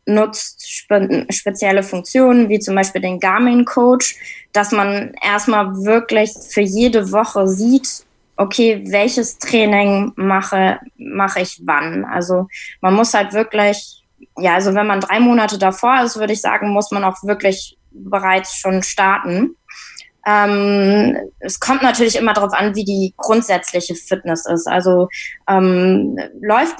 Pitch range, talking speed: 195-230 Hz, 135 wpm